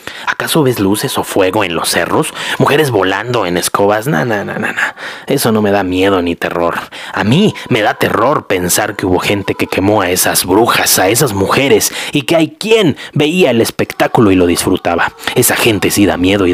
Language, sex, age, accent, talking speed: Spanish, male, 30-49, Mexican, 205 wpm